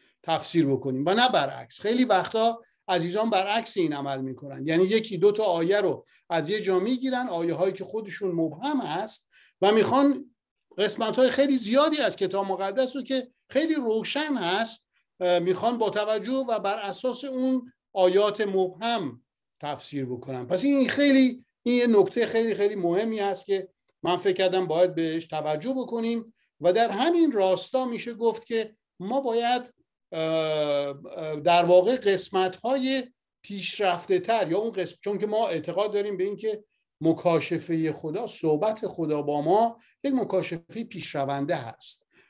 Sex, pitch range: male, 165-230 Hz